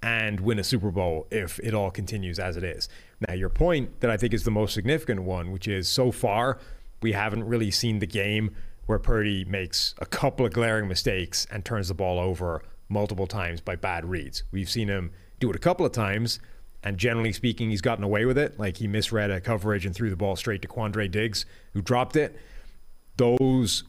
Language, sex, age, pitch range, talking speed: English, male, 30-49, 100-125 Hz, 215 wpm